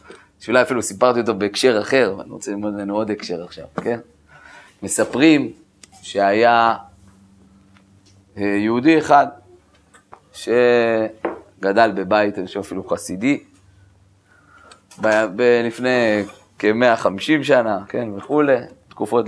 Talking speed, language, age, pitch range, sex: 100 wpm, Hebrew, 30-49, 100-125 Hz, male